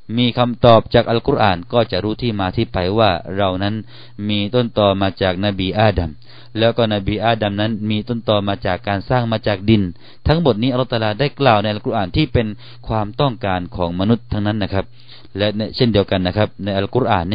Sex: male